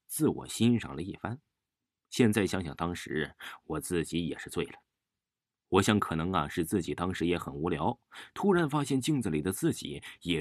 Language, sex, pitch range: Chinese, male, 85-120 Hz